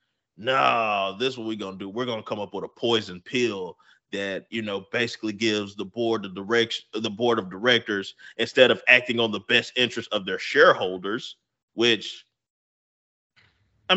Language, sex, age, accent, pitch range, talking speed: English, male, 30-49, American, 105-140 Hz, 170 wpm